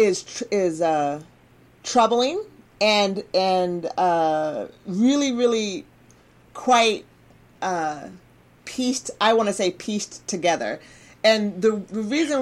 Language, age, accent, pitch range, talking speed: English, 40-59, American, 175-220 Hz, 100 wpm